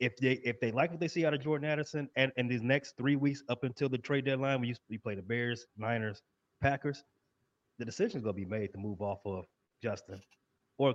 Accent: American